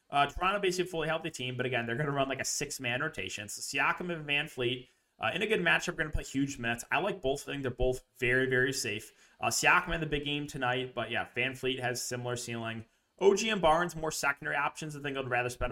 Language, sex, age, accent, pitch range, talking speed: English, male, 20-39, American, 120-160 Hz, 250 wpm